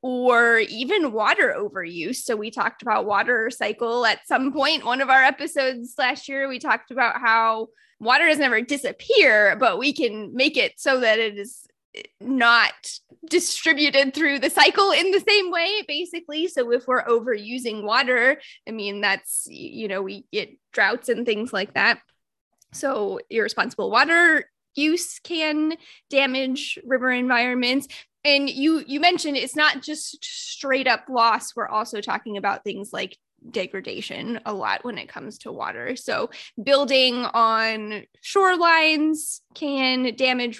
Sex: female